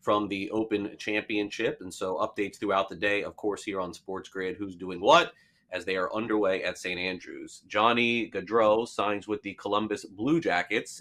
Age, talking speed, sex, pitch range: 30-49, 185 wpm, male, 100-125 Hz